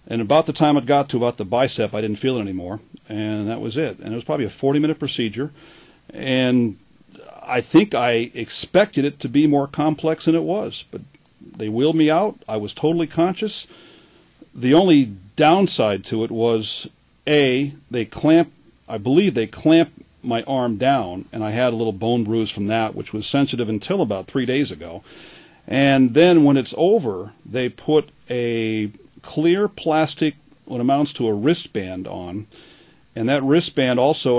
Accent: American